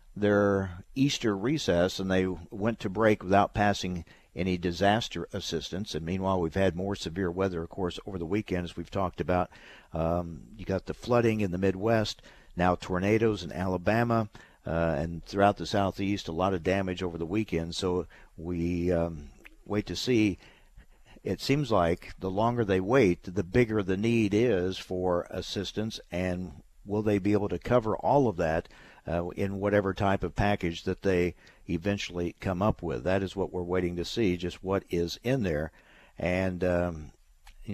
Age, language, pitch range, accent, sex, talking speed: 60-79, English, 90-105 Hz, American, male, 175 wpm